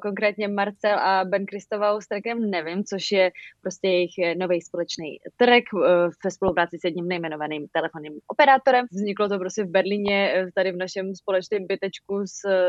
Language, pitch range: Czech, 180-210 Hz